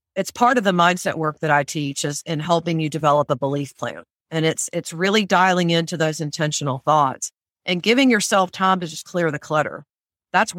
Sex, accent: female, American